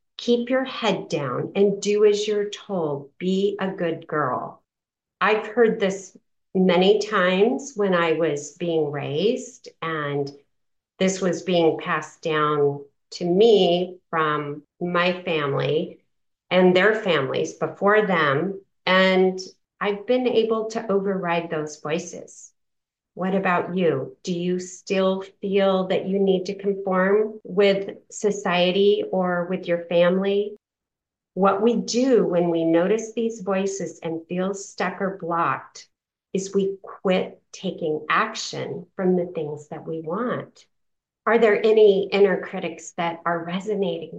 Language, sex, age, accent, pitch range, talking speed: English, female, 40-59, American, 170-205 Hz, 130 wpm